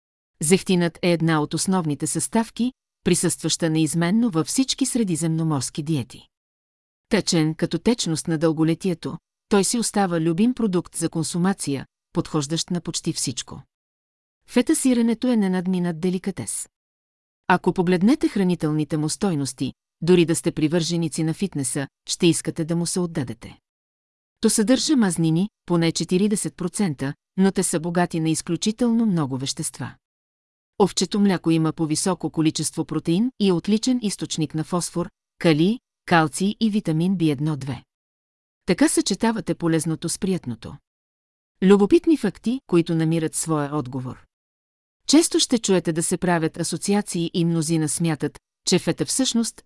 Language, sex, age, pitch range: Bulgarian, female, 40-59, 150-195 Hz